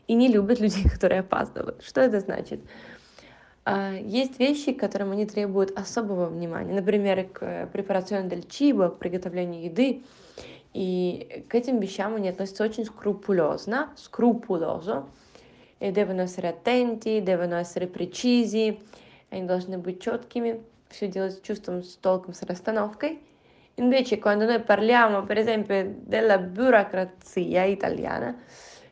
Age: 20-39